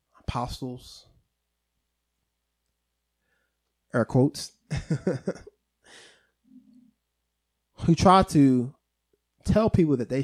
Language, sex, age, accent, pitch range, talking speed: English, male, 20-39, American, 90-155 Hz, 60 wpm